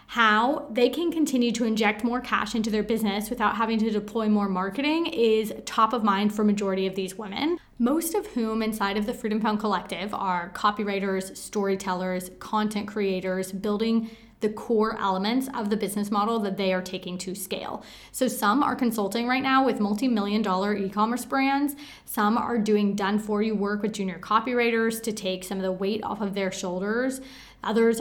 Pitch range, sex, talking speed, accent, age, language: 205-245 Hz, female, 180 wpm, American, 20-39, English